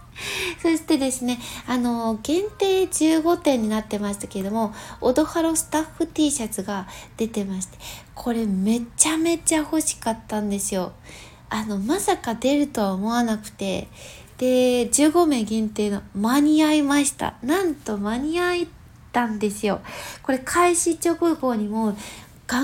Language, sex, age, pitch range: Japanese, female, 20-39, 220-310 Hz